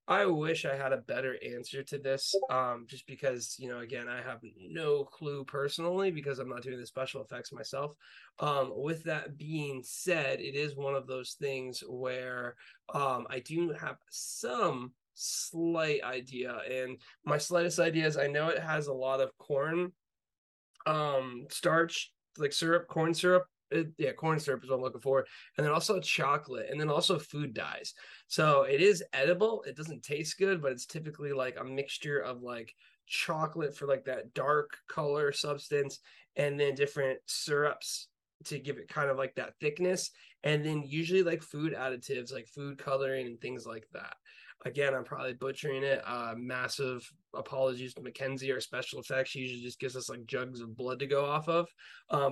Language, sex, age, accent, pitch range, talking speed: English, male, 20-39, American, 130-160 Hz, 180 wpm